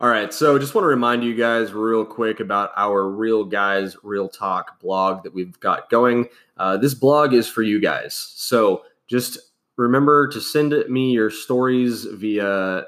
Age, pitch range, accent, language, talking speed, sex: 20-39, 95-115 Hz, American, English, 175 wpm, male